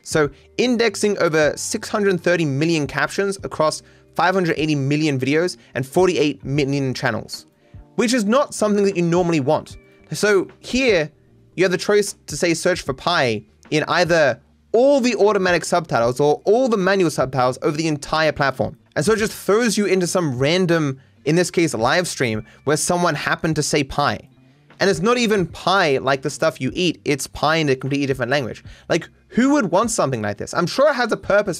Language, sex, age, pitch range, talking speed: English, male, 20-39, 140-195 Hz, 185 wpm